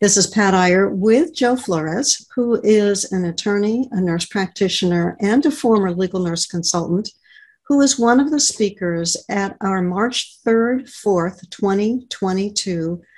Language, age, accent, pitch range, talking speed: English, 60-79, American, 185-235 Hz, 145 wpm